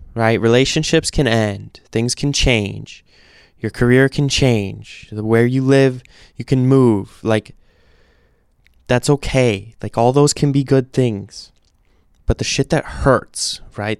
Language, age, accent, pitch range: English, 20-39, American, 95-120 Hz